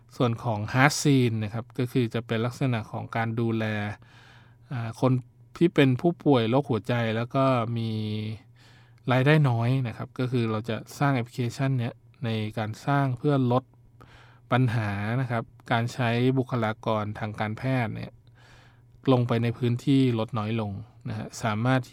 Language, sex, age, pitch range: Thai, male, 20-39, 115-135 Hz